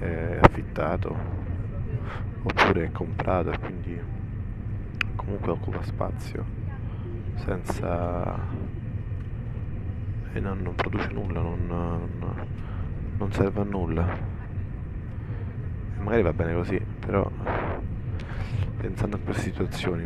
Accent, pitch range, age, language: native, 95-110 Hz, 20-39, Italian